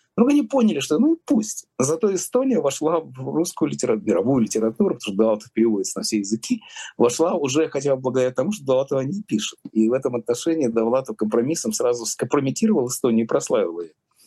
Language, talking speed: Russian, 190 wpm